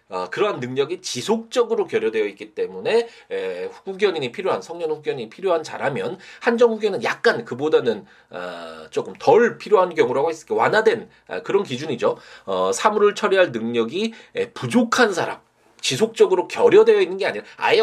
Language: Korean